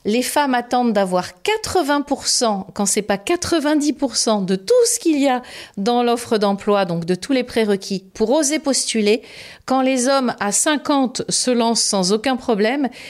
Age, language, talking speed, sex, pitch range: 40-59, French, 165 wpm, female, 195-255 Hz